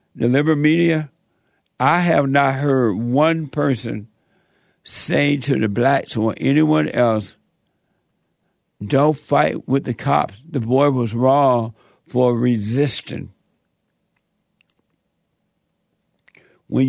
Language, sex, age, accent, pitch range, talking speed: English, male, 60-79, American, 120-155 Hz, 100 wpm